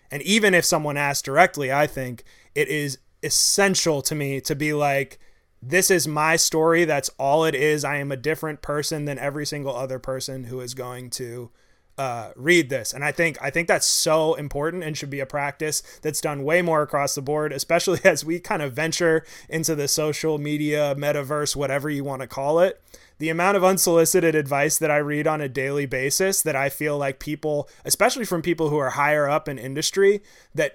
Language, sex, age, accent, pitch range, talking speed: English, male, 20-39, American, 135-160 Hz, 205 wpm